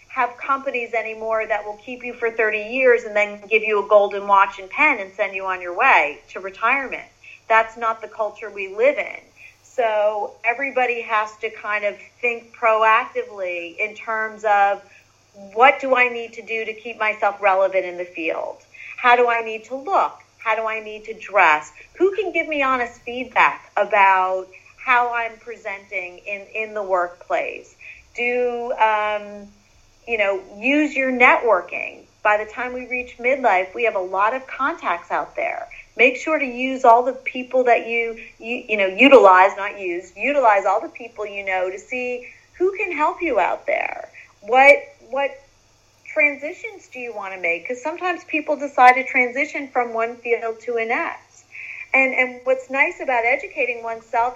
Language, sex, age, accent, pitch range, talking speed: English, female, 40-59, American, 210-265 Hz, 175 wpm